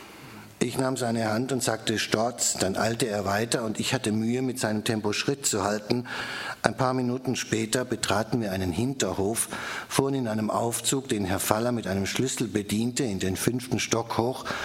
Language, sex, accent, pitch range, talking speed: German, male, German, 105-120 Hz, 185 wpm